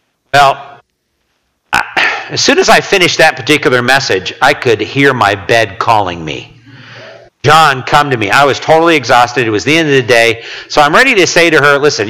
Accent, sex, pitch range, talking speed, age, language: American, male, 100-135 Hz, 195 wpm, 50-69, English